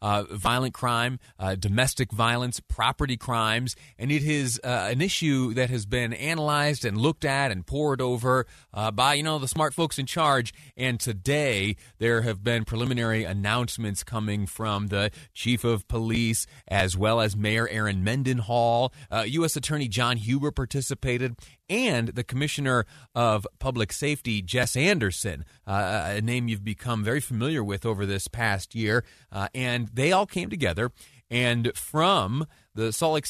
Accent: American